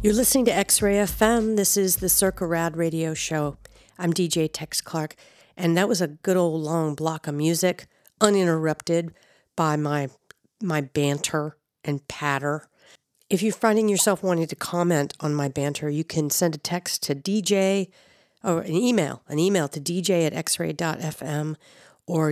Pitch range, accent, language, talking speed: 155-190 Hz, American, English, 160 wpm